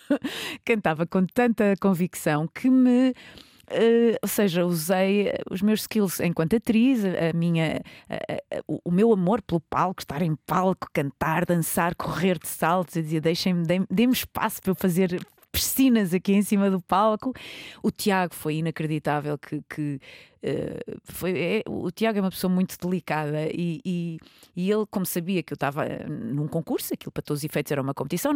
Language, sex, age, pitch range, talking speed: Portuguese, female, 20-39, 170-230 Hz, 150 wpm